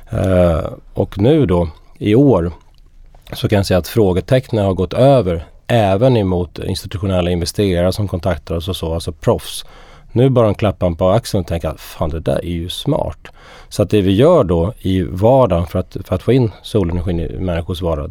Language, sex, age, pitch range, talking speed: Swedish, male, 30-49, 85-105 Hz, 195 wpm